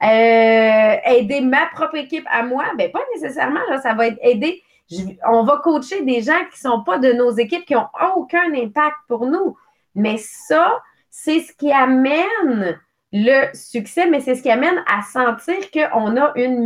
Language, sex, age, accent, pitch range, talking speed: English, female, 30-49, Canadian, 225-305 Hz, 185 wpm